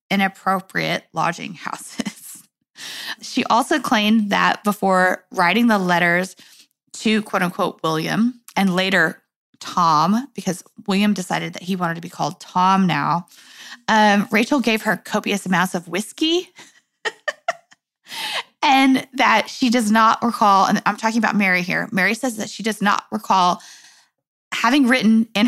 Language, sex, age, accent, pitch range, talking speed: English, female, 20-39, American, 190-245 Hz, 135 wpm